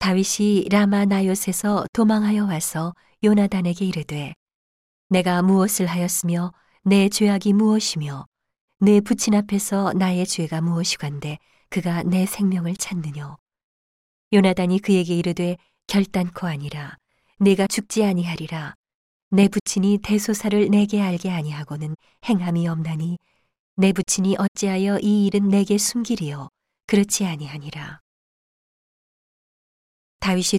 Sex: female